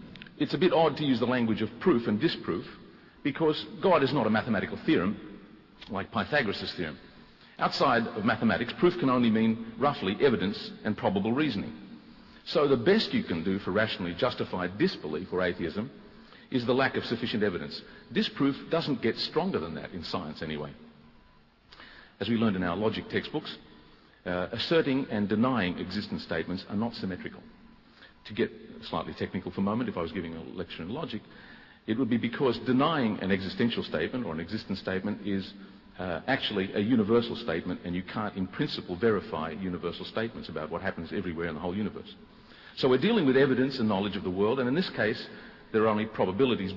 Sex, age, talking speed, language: male, 50-69, 185 wpm, English